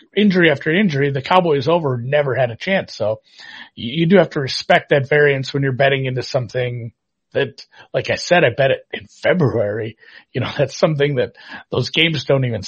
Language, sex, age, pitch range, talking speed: English, male, 40-59, 130-165 Hz, 195 wpm